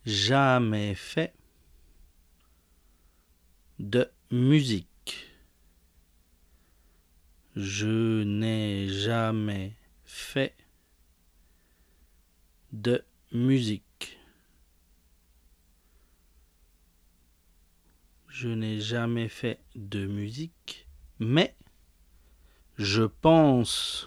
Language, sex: English, male